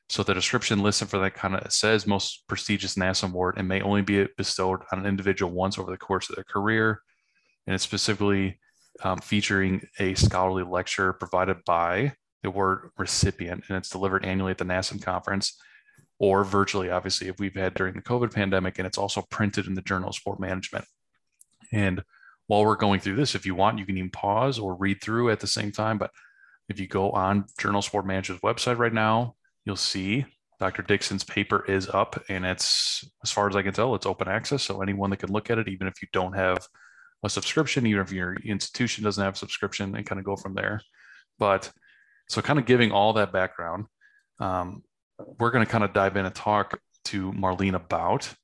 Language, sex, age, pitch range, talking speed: English, male, 20-39, 95-105 Hz, 210 wpm